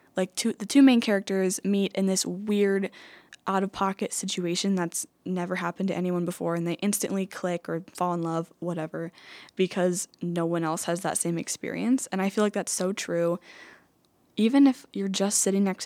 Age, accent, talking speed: 10-29, American, 180 wpm